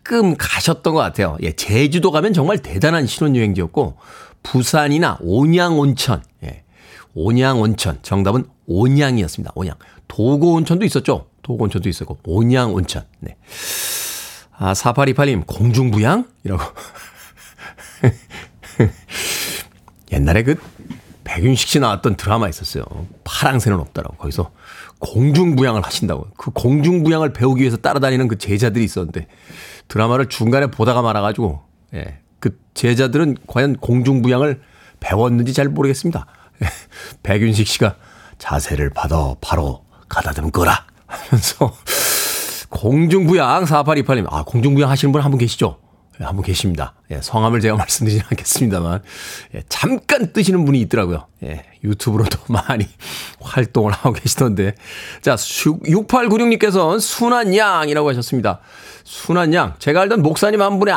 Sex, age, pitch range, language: male, 40-59, 100-150 Hz, Korean